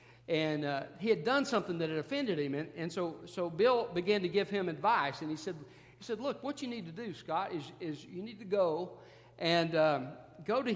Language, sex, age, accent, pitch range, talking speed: English, male, 50-69, American, 140-195 Hz, 235 wpm